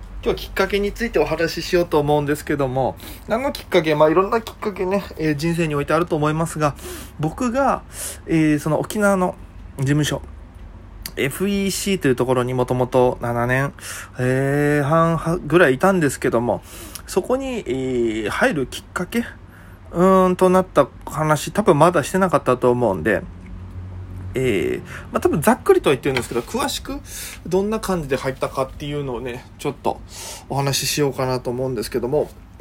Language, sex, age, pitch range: Japanese, male, 20-39, 120-160 Hz